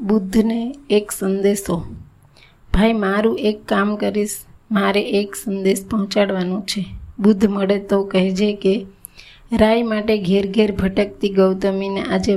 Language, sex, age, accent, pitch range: Gujarati, female, 20-39, native, 195-215 Hz